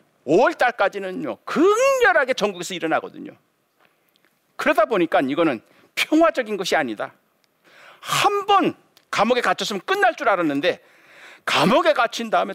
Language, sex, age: Korean, male, 50-69